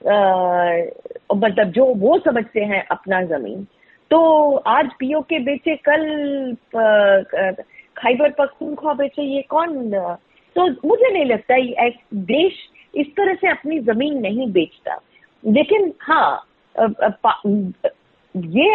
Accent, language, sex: native, Hindi, female